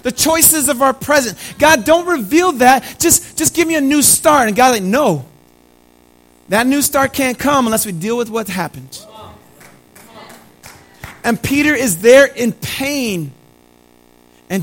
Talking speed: 155 wpm